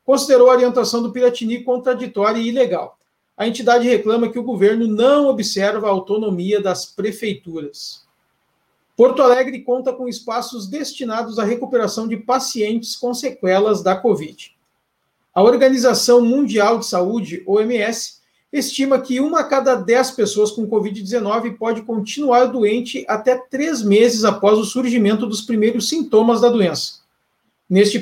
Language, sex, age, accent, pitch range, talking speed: Portuguese, male, 50-69, Brazilian, 210-250 Hz, 135 wpm